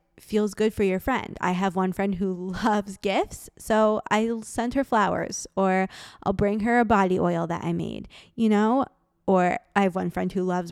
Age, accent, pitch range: 20-39, American, 185-225 Hz